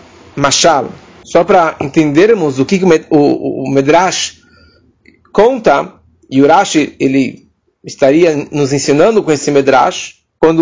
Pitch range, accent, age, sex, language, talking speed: 155-205 Hz, Brazilian, 40-59, male, English, 115 wpm